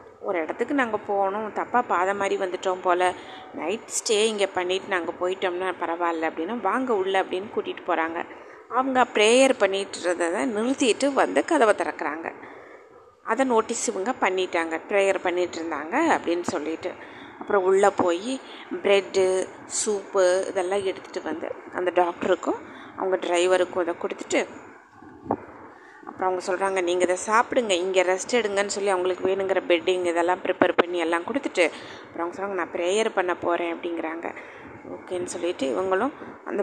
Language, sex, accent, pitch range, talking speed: Tamil, female, native, 180-235 Hz, 135 wpm